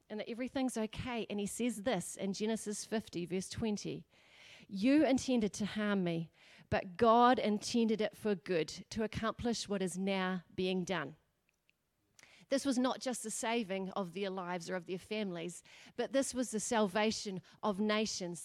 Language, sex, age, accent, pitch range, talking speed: English, female, 40-59, Australian, 185-230 Hz, 165 wpm